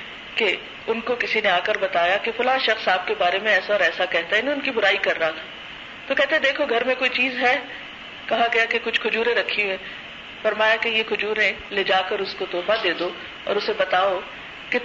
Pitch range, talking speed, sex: 210-260 Hz, 230 wpm, female